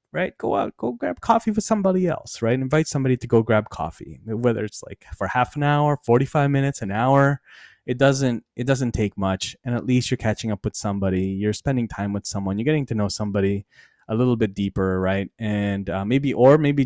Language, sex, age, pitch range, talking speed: English, male, 20-39, 100-140 Hz, 215 wpm